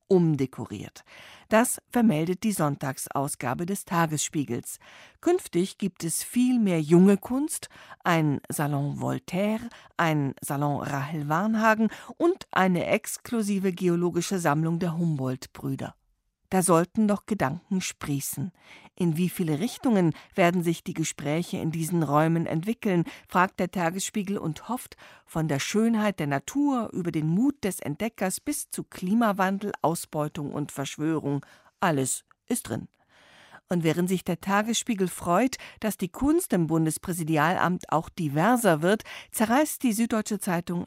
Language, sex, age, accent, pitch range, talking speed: German, female, 50-69, German, 155-205 Hz, 125 wpm